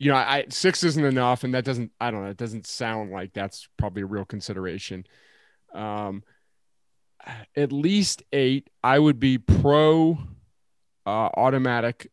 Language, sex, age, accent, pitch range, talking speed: English, male, 30-49, American, 110-135 Hz, 145 wpm